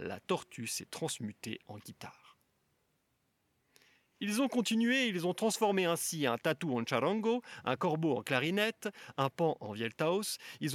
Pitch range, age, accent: 125-185 Hz, 40-59, French